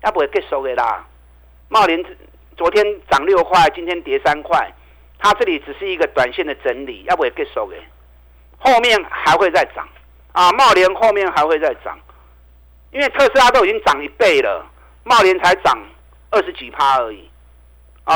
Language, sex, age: Chinese, male, 50-69